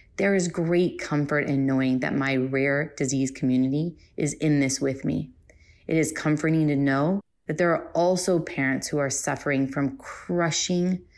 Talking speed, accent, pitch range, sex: 165 wpm, American, 135-165 Hz, female